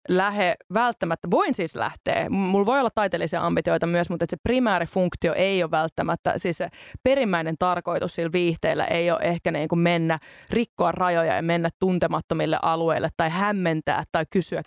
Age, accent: 30-49, native